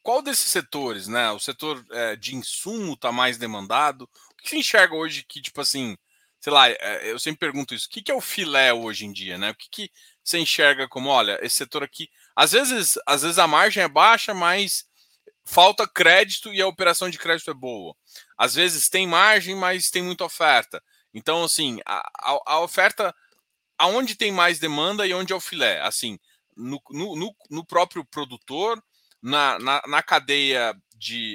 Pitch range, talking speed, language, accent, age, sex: 140-200 Hz, 180 wpm, Portuguese, Brazilian, 20-39, male